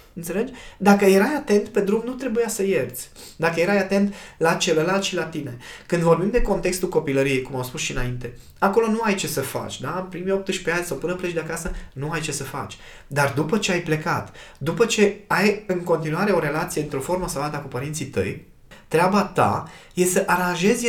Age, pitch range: 20-39, 130-190 Hz